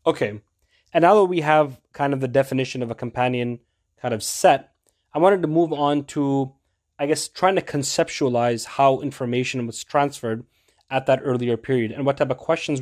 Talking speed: 185 wpm